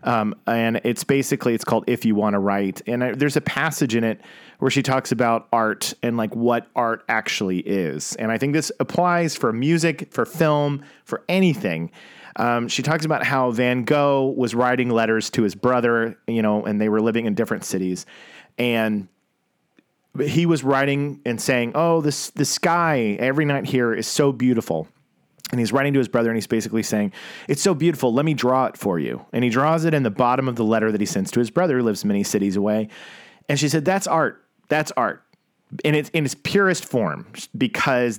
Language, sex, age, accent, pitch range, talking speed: English, male, 40-59, American, 115-150 Hz, 205 wpm